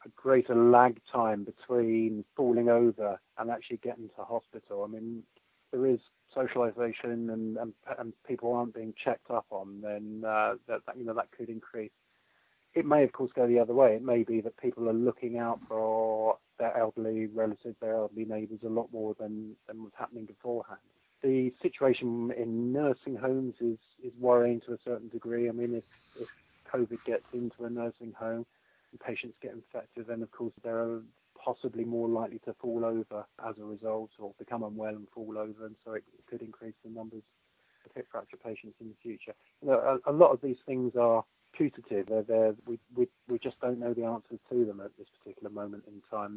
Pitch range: 110-120 Hz